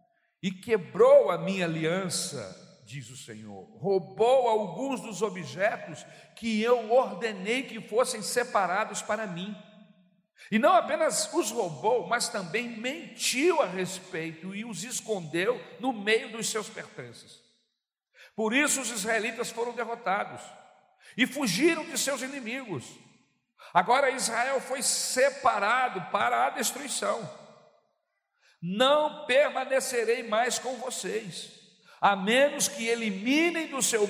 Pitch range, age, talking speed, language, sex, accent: 190-255 Hz, 60-79, 120 wpm, Portuguese, male, Brazilian